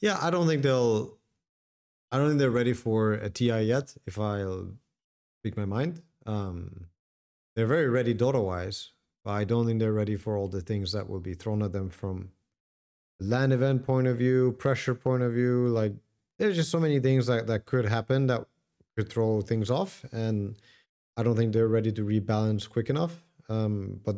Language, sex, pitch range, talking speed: English, male, 105-130 Hz, 195 wpm